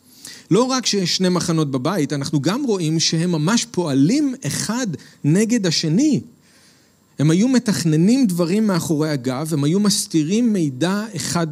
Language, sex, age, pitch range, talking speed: Hebrew, male, 40-59, 140-195 Hz, 135 wpm